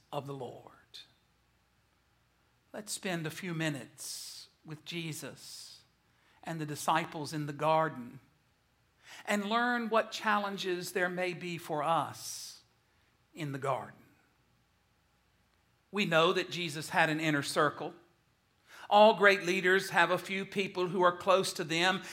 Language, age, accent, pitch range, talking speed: English, 50-69, American, 170-210 Hz, 130 wpm